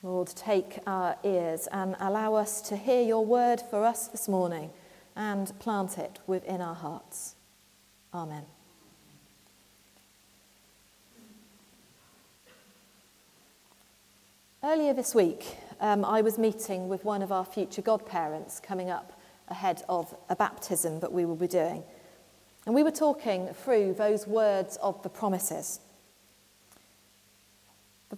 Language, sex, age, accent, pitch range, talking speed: English, female, 40-59, British, 175-215 Hz, 120 wpm